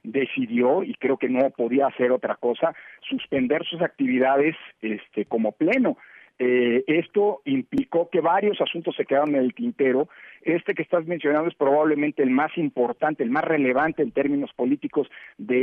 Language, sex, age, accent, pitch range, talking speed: Spanish, male, 50-69, Mexican, 130-175 Hz, 160 wpm